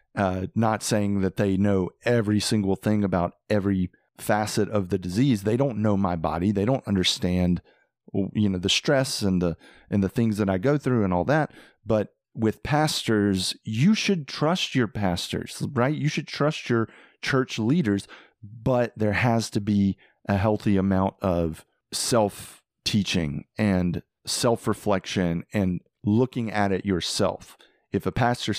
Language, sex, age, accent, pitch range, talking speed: English, male, 40-59, American, 95-120 Hz, 155 wpm